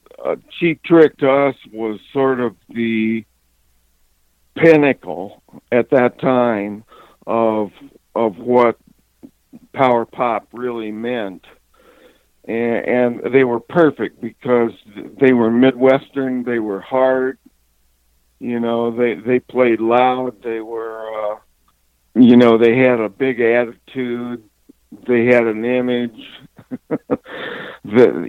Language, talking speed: English, 110 wpm